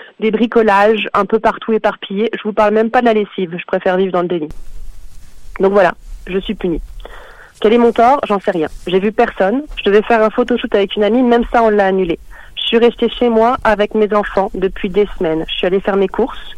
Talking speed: 235 wpm